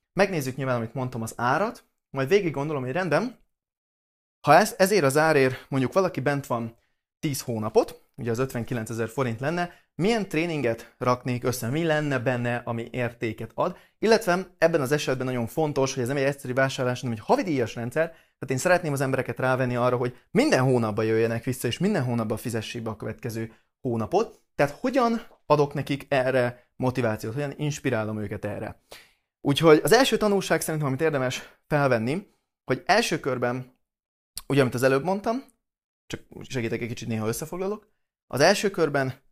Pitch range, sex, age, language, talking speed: 120-155 Hz, male, 30-49, Hungarian, 165 wpm